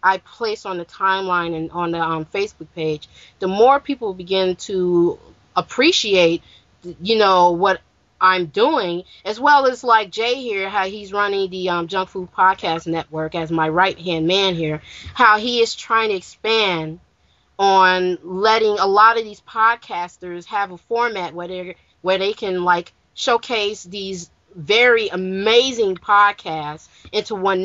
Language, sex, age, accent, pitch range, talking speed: English, female, 30-49, American, 170-210 Hz, 155 wpm